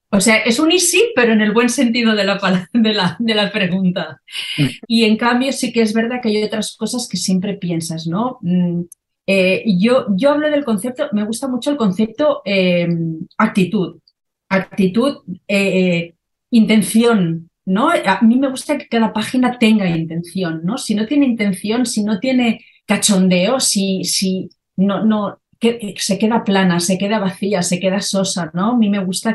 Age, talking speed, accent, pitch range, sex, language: 40-59, 180 wpm, Spanish, 185-225 Hz, female, Spanish